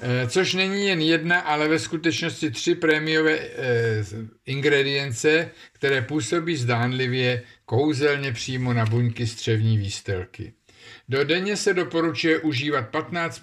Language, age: Czech, 50-69